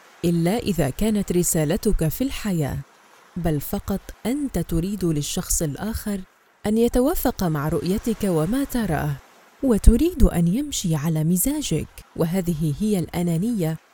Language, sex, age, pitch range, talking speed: Arabic, female, 30-49, 165-225 Hz, 110 wpm